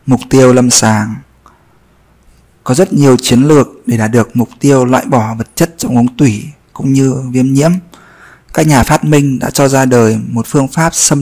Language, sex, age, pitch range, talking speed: Vietnamese, male, 20-39, 120-145 Hz, 200 wpm